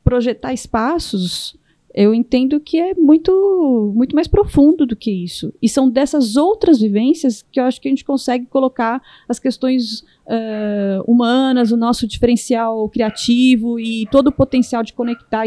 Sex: female